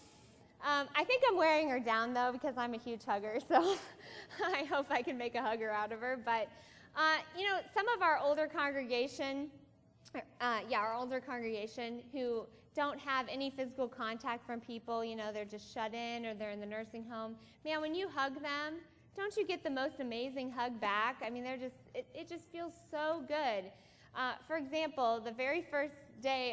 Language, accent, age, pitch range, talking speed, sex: English, American, 20-39, 230-305 Hz, 200 wpm, female